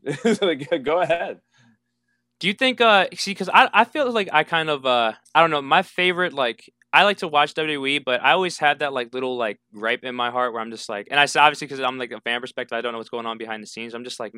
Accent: American